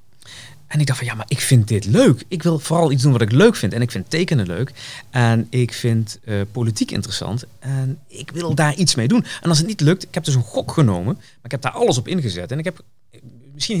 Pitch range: 115-155 Hz